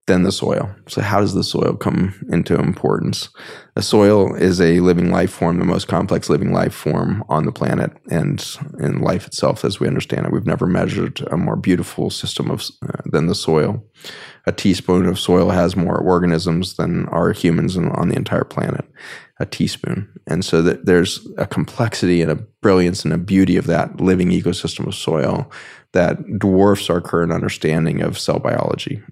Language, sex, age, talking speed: English, male, 20-39, 185 wpm